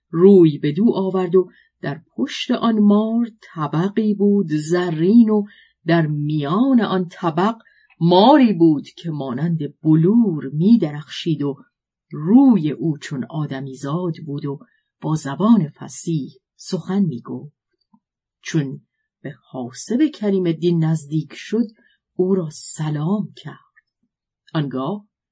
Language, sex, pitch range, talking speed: Persian, female, 150-210 Hz, 115 wpm